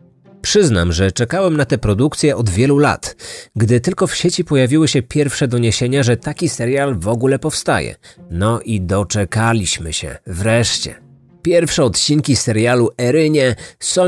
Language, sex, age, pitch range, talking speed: Polish, male, 30-49, 95-135 Hz, 140 wpm